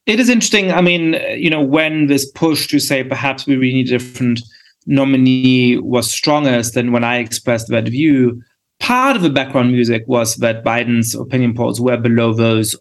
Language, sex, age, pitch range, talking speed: English, male, 30-49, 115-150 Hz, 185 wpm